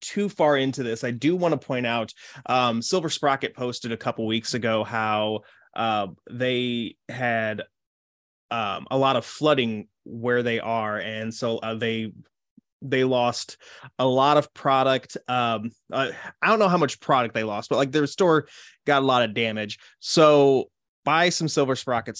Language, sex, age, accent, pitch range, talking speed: English, male, 20-39, American, 115-160 Hz, 175 wpm